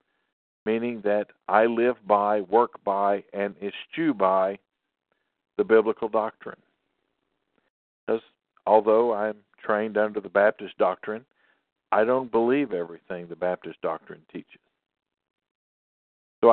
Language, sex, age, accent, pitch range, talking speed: English, male, 50-69, American, 100-115 Hz, 110 wpm